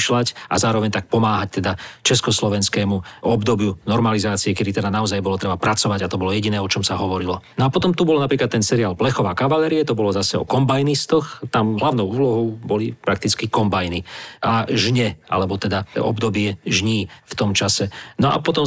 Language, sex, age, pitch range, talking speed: Slovak, male, 40-59, 105-130 Hz, 175 wpm